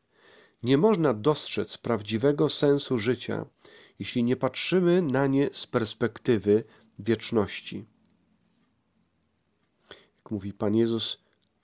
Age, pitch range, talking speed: 40-59, 110-140 Hz, 95 wpm